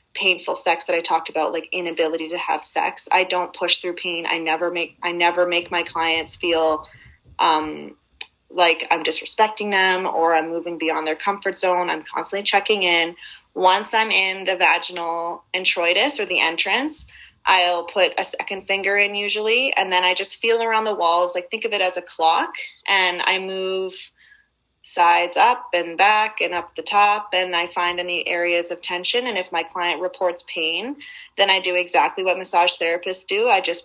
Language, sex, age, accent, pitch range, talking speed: English, female, 20-39, American, 175-200 Hz, 190 wpm